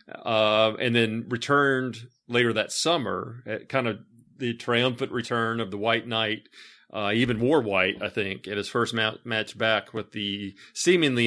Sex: male